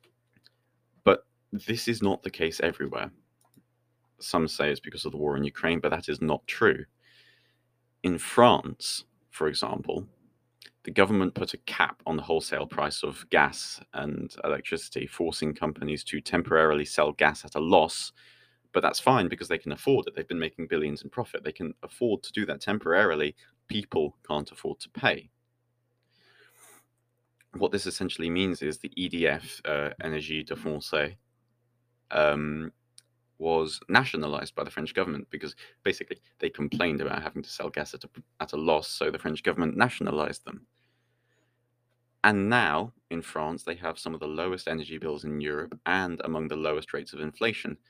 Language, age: English, 30-49